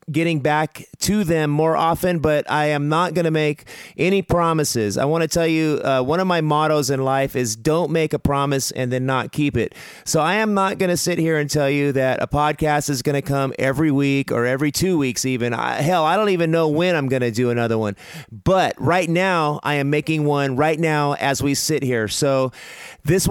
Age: 30-49